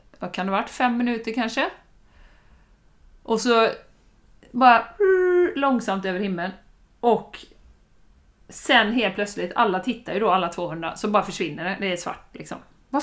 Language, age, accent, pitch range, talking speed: Swedish, 30-49, native, 185-255 Hz, 150 wpm